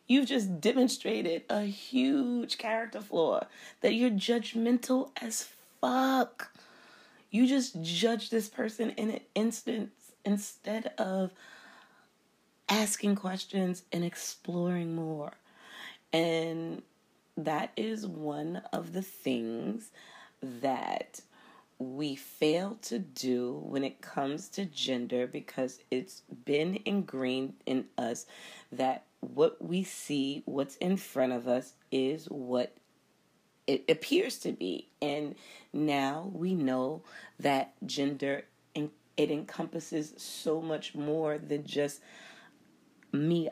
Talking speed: 110 wpm